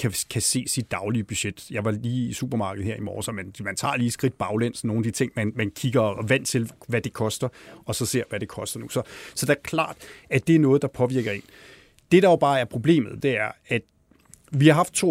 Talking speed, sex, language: 255 wpm, male, Danish